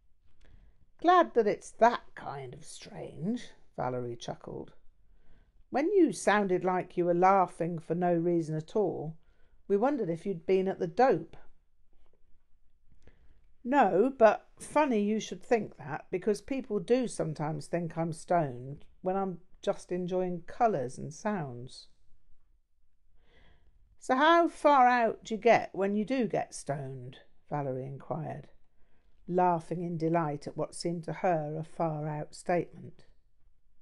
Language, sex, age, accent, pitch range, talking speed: English, female, 50-69, British, 135-195 Hz, 135 wpm